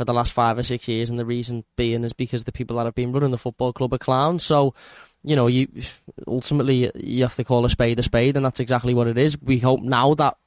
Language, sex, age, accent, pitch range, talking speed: English, male, 10-29, British, 120-130 Hz, 270 wpm